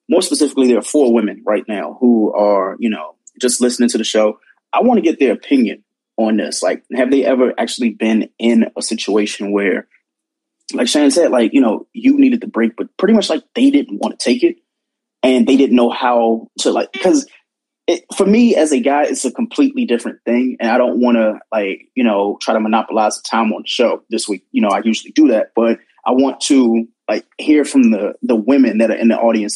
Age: 20-39